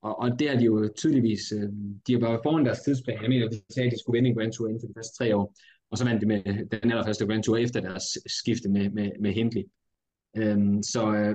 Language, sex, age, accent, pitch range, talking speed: Danish, male, 20-39, native, 105-120 Hz, 250 wpm